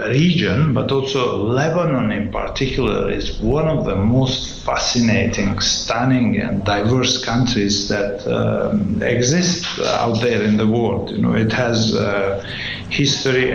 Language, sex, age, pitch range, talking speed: English, male, 50-69, 115-135 Hz, 135 wpm